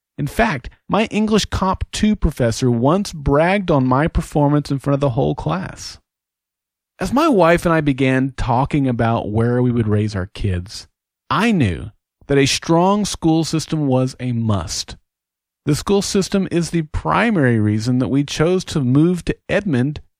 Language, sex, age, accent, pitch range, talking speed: English, male, 40-59, American, 120-175 Hz, 165 wpm